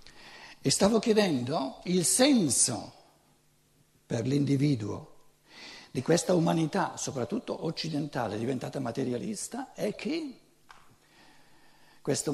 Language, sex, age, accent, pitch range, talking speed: Italian, male, 60-79, native, 125-185 Hz, 85 wpm